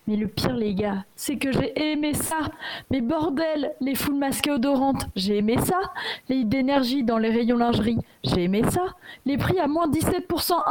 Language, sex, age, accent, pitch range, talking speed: French, female, 20-39, French, 225-285 Hz, 185 wpm